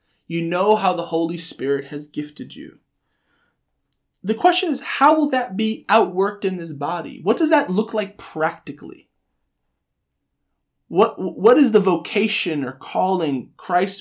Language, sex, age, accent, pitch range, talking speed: English, male, 20-39, American, 155-215 Hz, 145 wpm